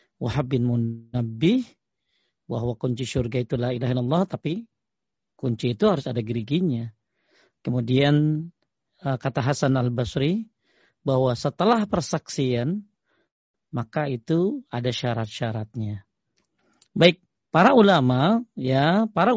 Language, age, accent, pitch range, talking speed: Indonesian, 40-59, native, 125-175 Hz, 95 wpm